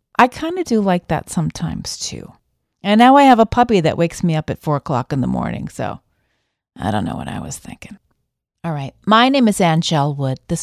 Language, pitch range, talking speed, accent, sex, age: English, 160-225 Hz, 220 wpm, American, female, 40-59